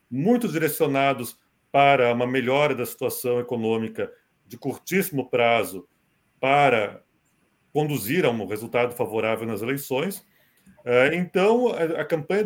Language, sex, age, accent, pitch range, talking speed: Portuguese, male, 40-59, Brazilian, 130-195 Hz, 105 wpm